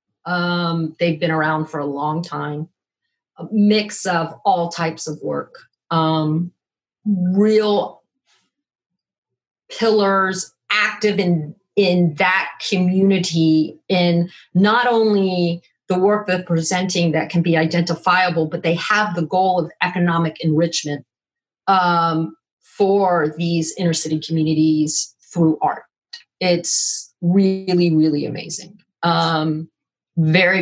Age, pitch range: 40-59, 160-190 Hz